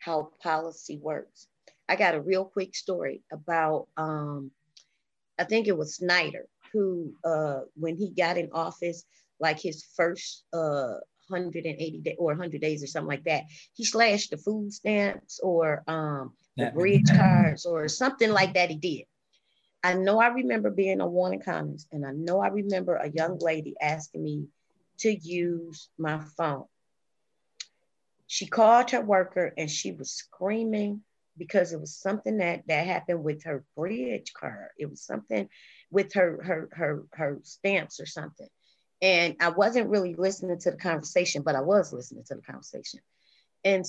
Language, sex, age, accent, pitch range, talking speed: English, female, 30-49, American, 155-185 Hz, 165 wpm